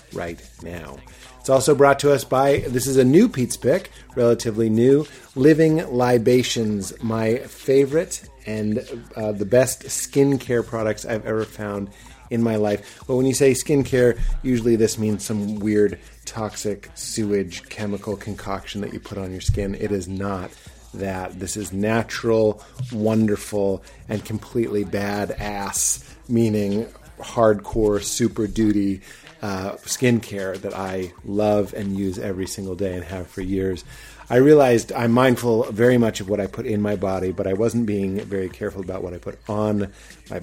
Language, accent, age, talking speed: English, American, 30-49, 155 wpm